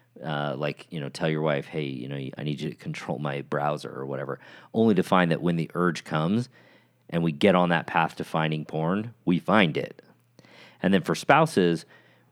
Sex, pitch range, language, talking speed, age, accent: male, 75-90 Hz, English, 210 wpm, 40-59, American